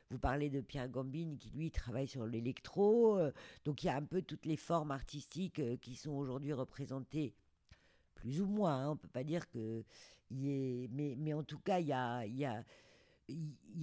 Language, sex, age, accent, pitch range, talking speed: French, female, 50-69, French, 130-165 Hz, 180 wpm